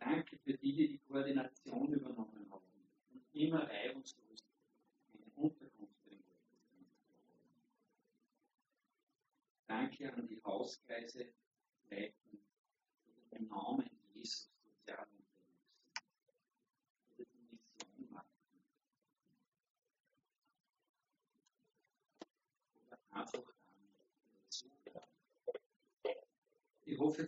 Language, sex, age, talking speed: German, male, 50-69, 75 wpm